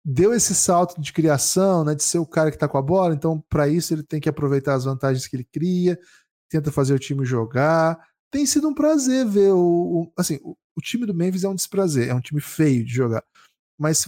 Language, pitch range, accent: Portuguese, 125-175 Hz, Brazilian